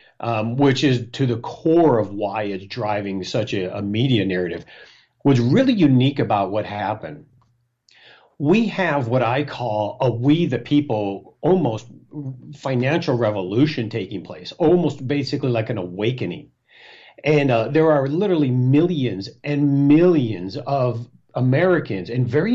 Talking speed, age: 140 wpm, 50-69